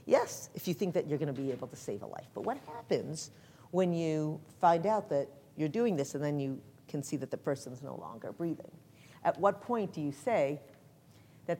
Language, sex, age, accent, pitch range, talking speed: English, female, 50-69, American, 140-180 Hz, 215 wpm